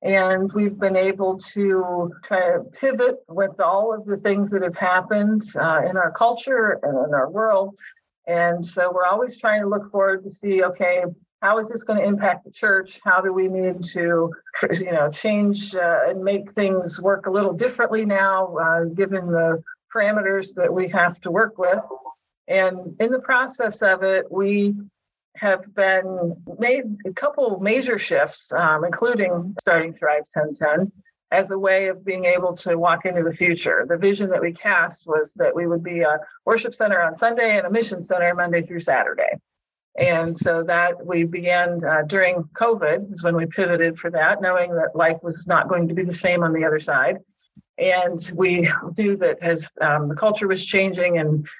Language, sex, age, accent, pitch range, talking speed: English, female, 50-69, American, 170-200 Hz, 185 wpm